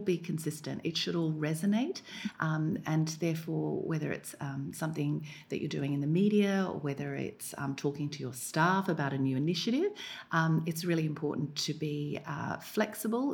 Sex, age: female, 40-59